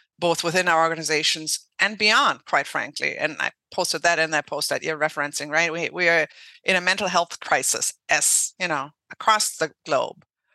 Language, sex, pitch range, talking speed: English, female, 155-190 Hz, 190 wpm